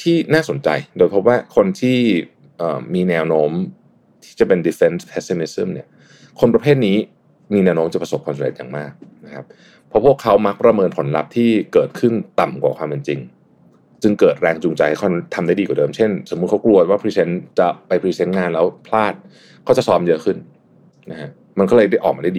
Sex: male